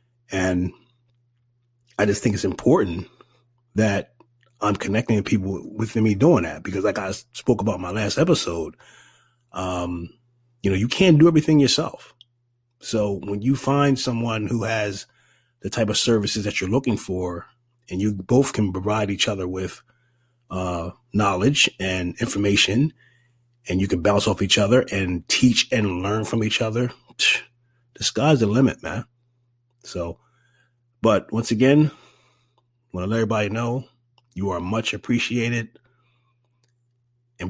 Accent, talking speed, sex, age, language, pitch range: American, 145 wpm, male, 30-49, English, 100-120 Hz